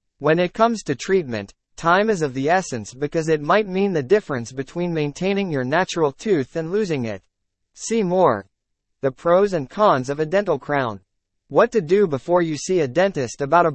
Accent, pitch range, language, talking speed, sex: American, 130-195 Hz, English, 190 wpm, male